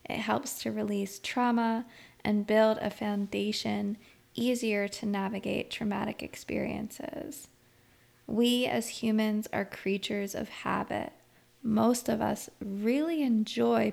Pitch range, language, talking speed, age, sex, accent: 205-230 Hz, English, 110 wpm, 20-39, female, American